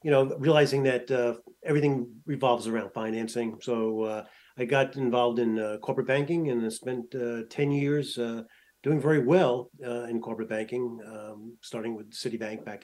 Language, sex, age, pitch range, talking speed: English, male, 40-59, 120-150 Hz, 175 wpm